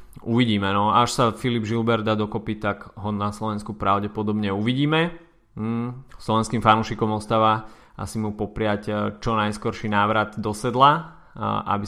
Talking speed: 130 wpm